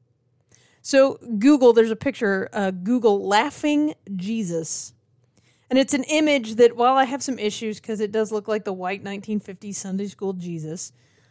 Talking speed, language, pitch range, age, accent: 160 wpm, English, 180-250 Hz, 30-49, American